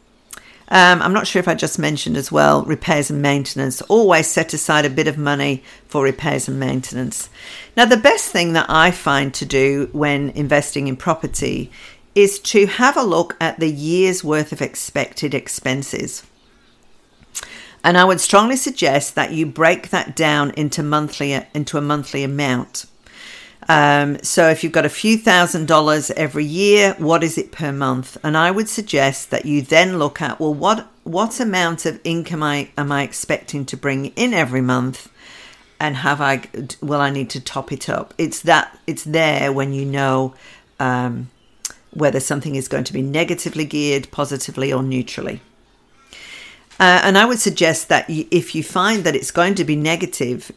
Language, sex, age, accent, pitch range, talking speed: English, female, 50-69, British, 140-170 Hz, 180 wpm